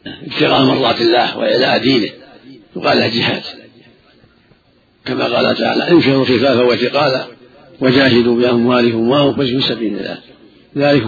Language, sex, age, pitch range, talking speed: Arabic, male, 50-69, 125-145 Hz, 115 wpm